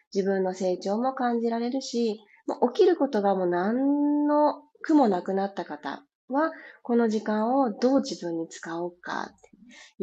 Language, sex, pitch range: Japanese, female, 180-270 Hz